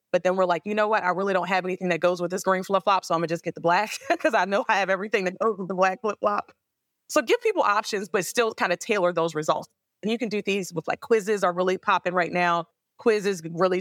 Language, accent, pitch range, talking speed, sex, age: English, American, 165-205 Hz, 275 wpm, female, 20-39